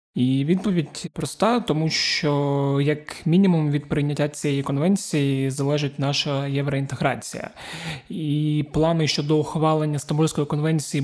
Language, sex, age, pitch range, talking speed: Ukrainian, male, 20-39, 135-155 Hz, 110 wpm